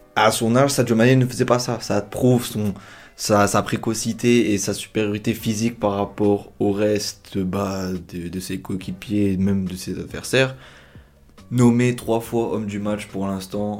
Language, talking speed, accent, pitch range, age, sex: French, 180 wpm, French, 100-115 Hz, 20-39, male